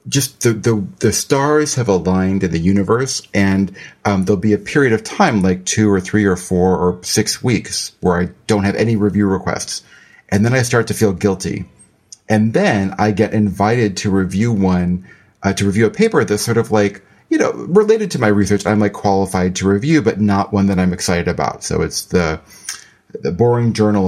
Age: 40-59